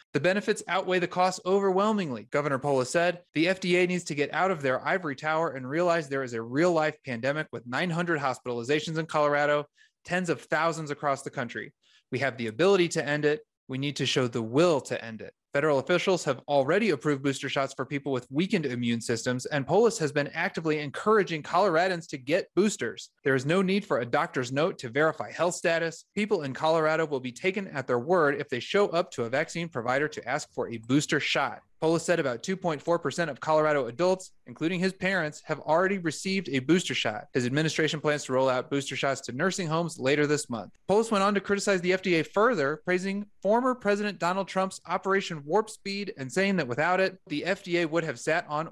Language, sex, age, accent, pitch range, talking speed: English, male, 30-49, American, 135-180 Hz, 205 wpm